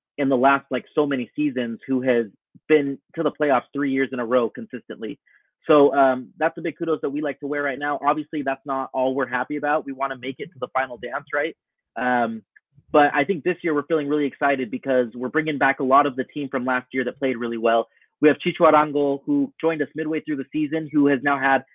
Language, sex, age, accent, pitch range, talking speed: English, male, 30-49, American, 130-155 Hz, 250 wpm